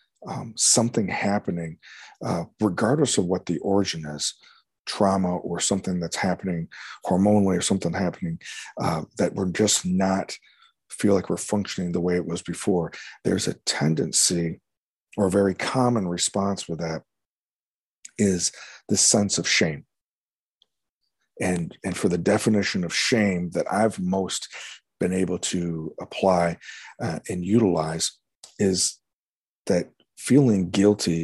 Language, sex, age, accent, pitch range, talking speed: English, male, 40-59, American, 85-100 Hz, 135 wpm